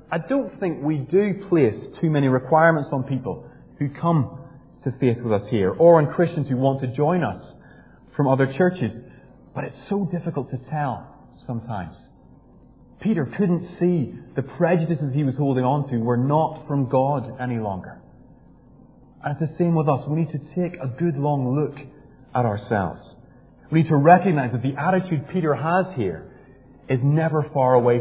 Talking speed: 175 wpm